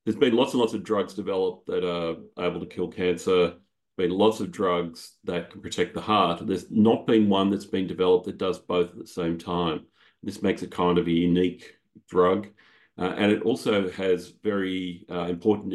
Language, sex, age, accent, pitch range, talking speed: English, male, 40-59, Australian, 85-100 Hz, 205 wpm